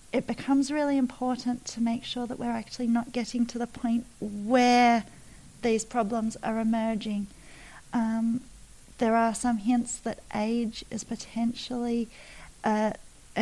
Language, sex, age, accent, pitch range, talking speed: English, female, 40-59, Australian, 205-235 Hz, 135 wpm